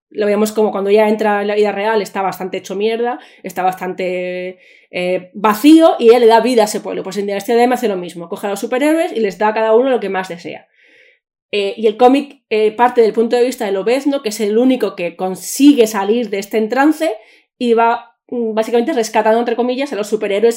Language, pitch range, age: Spanish, 195-240 Hz, 20-39